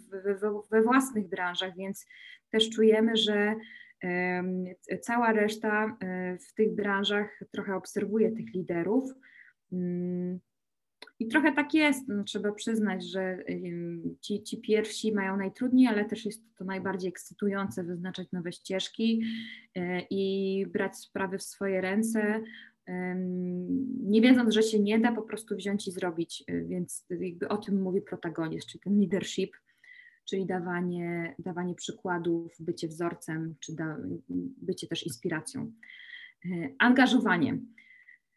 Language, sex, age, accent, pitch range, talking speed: Polish, female, 20-39, native, 185-235 Hz, 115 wpm